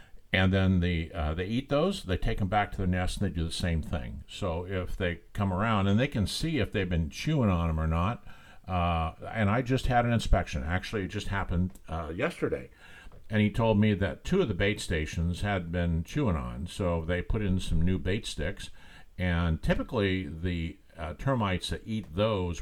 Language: English